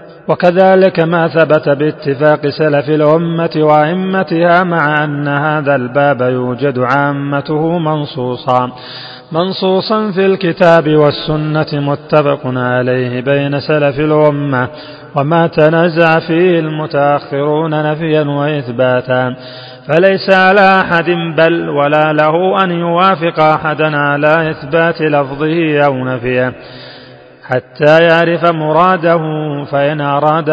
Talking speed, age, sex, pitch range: 95 wpm, 30-49, male, 140-165 Hz